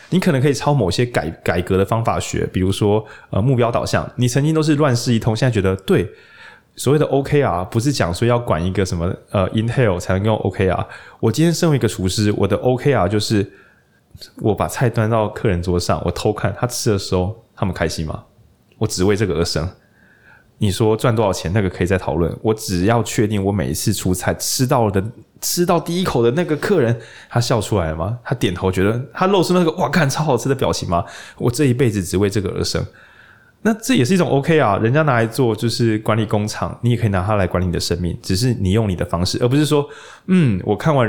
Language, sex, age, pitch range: Chinese, male, 20-39, 95-130 Hz